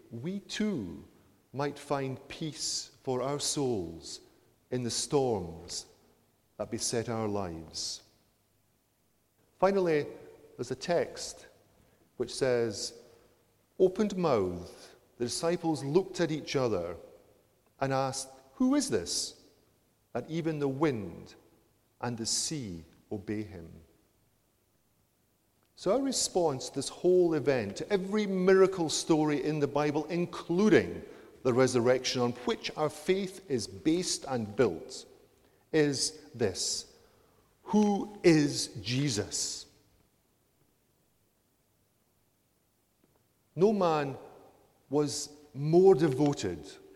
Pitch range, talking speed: 115-165 Hz, 100 wpm